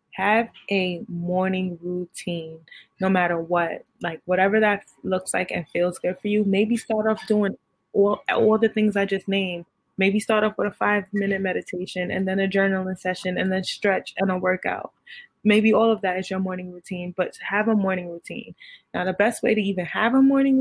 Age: 20-39